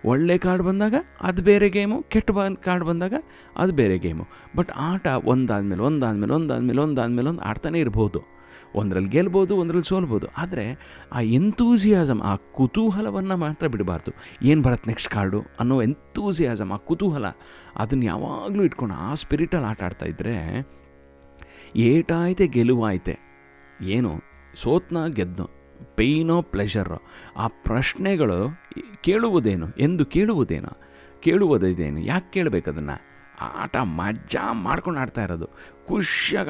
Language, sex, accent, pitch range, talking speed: Kannada, male, native, 90-155 Hz, 115 wpm